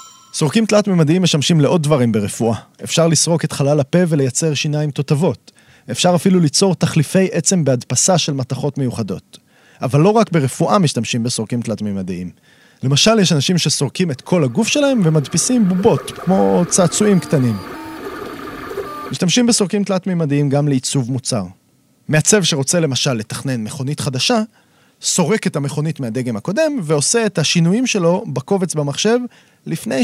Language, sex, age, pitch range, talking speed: Hebrew, male, 30-49, 130-200 Hz, 130 wpm